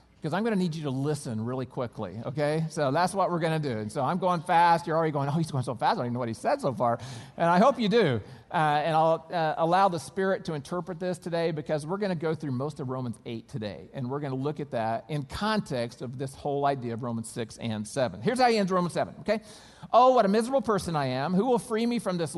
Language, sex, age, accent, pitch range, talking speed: English, male, 40-59, American, 125-180 Hz, 280 wpm